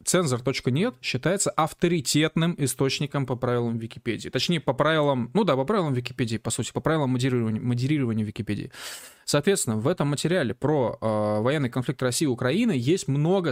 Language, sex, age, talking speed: Russian, male, 20-39, 155 wpm